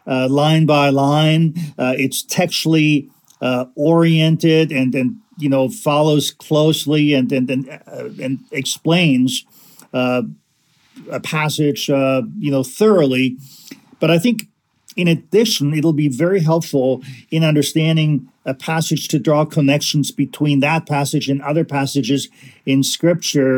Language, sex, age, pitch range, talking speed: English, male, 50-69, 135-160 Hz, 135 wpm